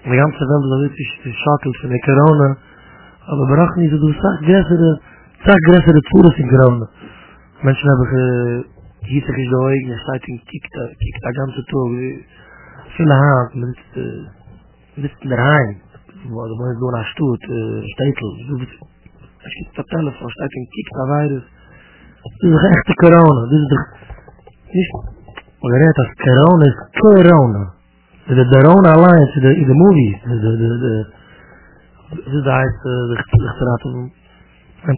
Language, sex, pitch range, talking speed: English, male, 115-145 Hz, 75 wpm